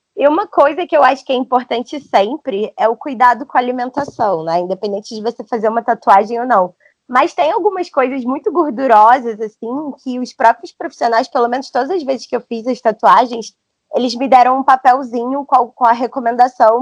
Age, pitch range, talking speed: 20-39, 220-275 Hz, 195 wpm